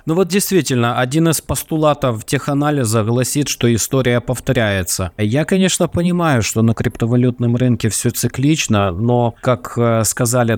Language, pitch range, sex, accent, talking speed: Russian, 115-145 Hz, male, native, 135 wpm